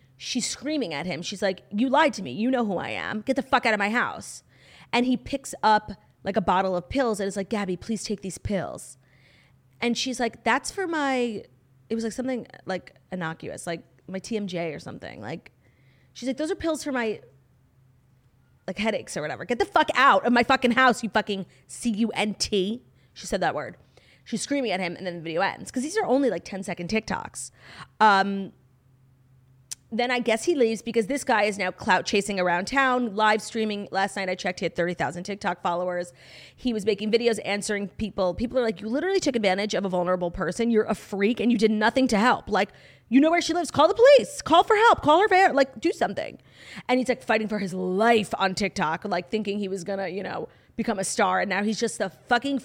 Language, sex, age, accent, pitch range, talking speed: English, female, 30-49, American, 180-245 Hz, 225 wpm